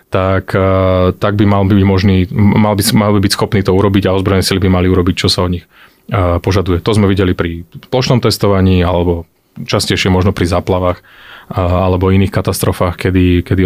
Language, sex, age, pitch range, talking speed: Slovak, male, 30-49, 95-110 Hz, 180 wpm